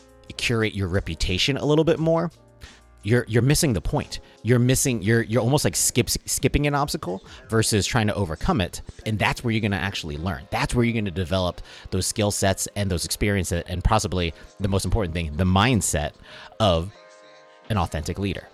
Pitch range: 90-115 Hz